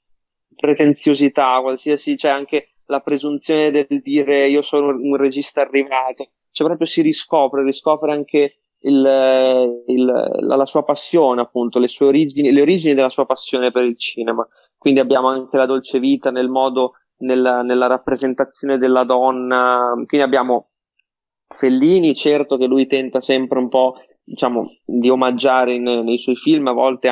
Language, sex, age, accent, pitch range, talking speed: Italian, male, 20-39, native, 125-145 Hz, 155 wpm